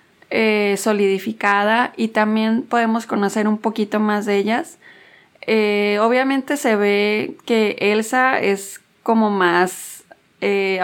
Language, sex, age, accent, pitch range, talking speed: Spanish, female, 20-39, Mexican, 200-225 Hz, 115 wpm